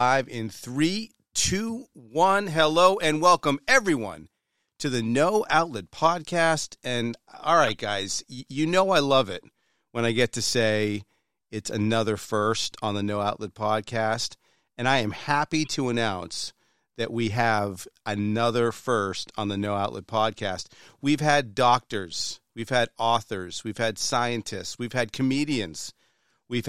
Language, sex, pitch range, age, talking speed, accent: English, male, 110-140 Hz, 40-59, 145 wpm, American